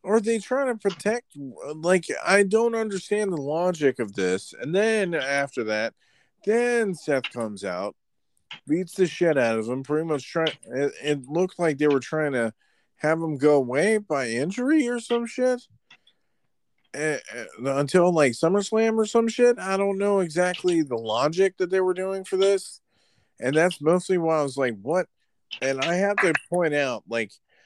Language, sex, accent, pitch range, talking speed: English, male, American, 120-180 Hz, 175 wpm